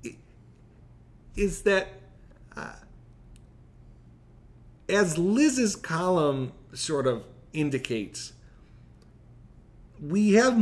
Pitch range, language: 120-180 Hz, English